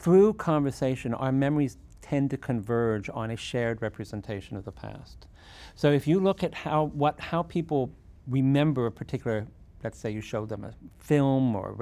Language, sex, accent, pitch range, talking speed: English, male, American, 110-140 Hz, 175 wpm